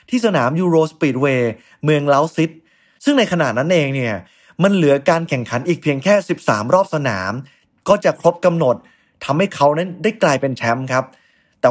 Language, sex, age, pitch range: Thai, male, 20-39, 135-190 Hz